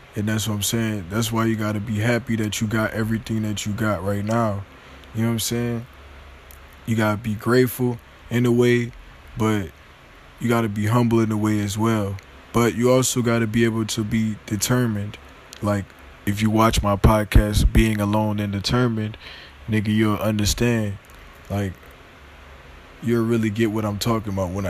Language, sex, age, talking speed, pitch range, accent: English, male, 20-39, 185 wpm, 95-115 Hz, American